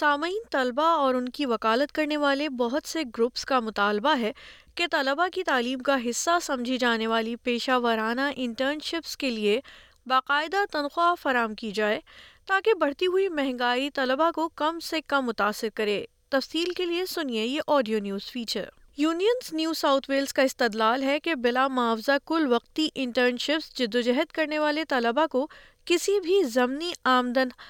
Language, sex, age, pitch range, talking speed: Urdu, female, 20-39, 240-310 Hz, 160 wpm